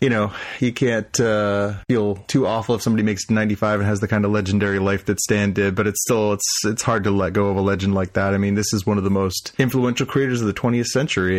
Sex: male